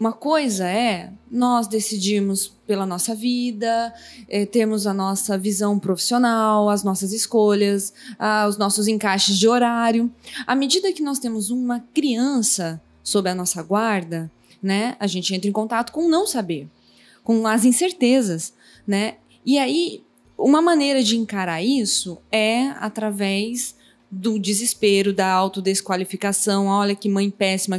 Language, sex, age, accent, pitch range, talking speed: Portuguese, female, 20-39, Brazilian, 200-260 Hz, 135 wpm